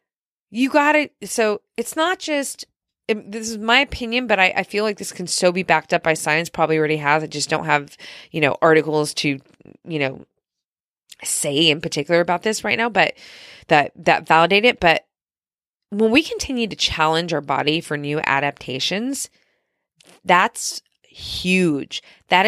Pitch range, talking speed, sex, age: 155-220 Hz, 170 wpm, female, 20-39